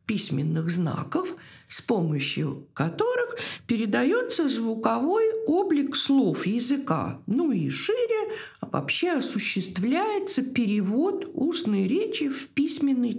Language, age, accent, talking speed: Russian, 50-69, native, 95 wpm